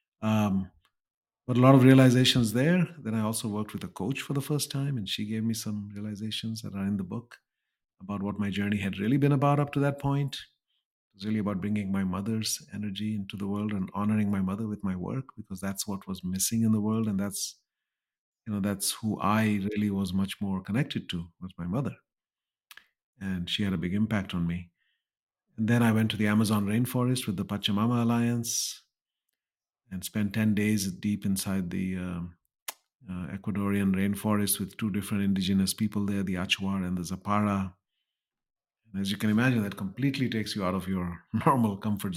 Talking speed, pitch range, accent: 195 wpm, 100-110 Hz, Indian